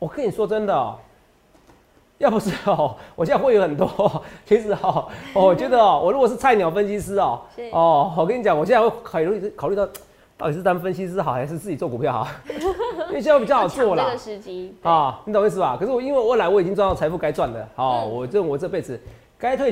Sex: male